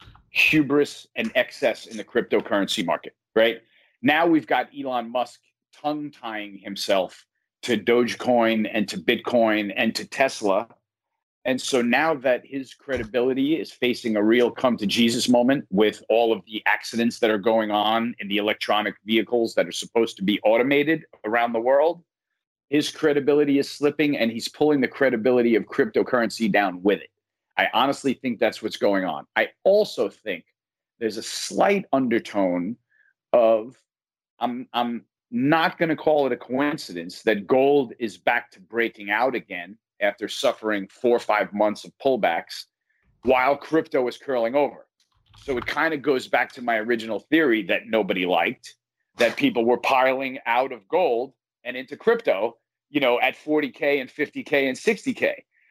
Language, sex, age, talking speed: English, male, 40-59, 160 wpm